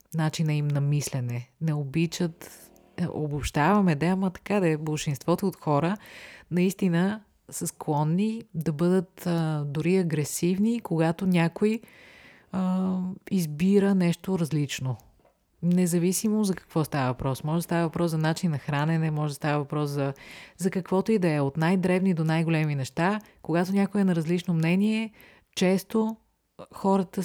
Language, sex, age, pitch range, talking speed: Bulgarian, female, 30-49, 150-185 Hz, 140 wpm